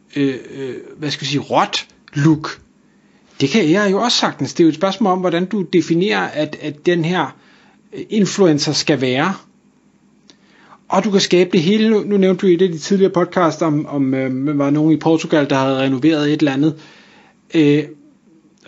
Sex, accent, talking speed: male, native, 180 wpm